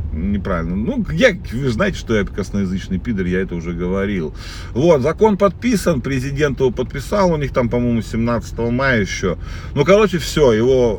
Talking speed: 165 wpm